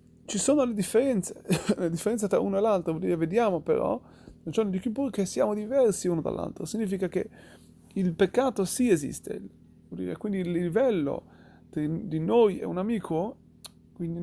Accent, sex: native, male